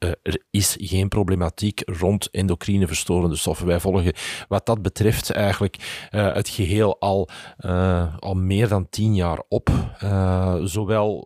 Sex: male